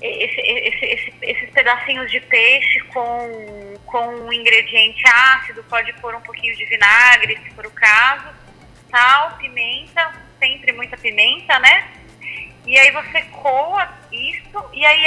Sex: female